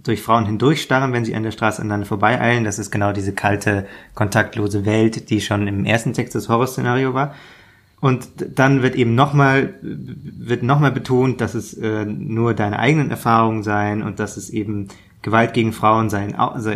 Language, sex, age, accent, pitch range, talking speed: German, male, 20-39, German, 105-130 Hz, 175 wpm